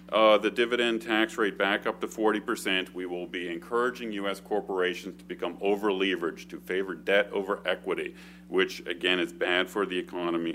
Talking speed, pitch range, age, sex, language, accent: 175 wpm, 85-110 Hz, 40-59, male, English, American